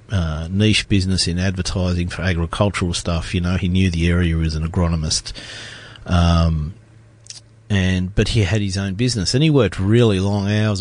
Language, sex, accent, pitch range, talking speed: English, male, Australian, 95-115 Hz, 170 wpm